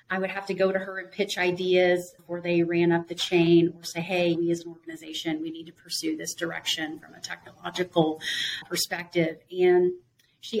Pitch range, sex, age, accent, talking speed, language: 170-200 Hz, female, 30-49, American, 200 wpm, English